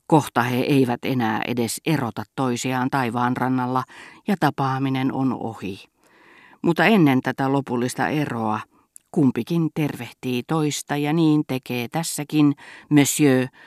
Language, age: Finnish, 40-59